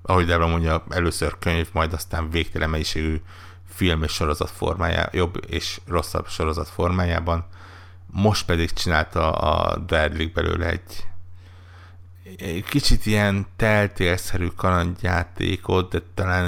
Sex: male